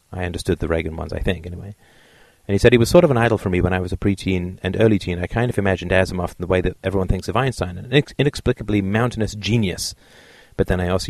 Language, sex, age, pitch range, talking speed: English, male, 30-49, 90-110 Hz, 260 wpm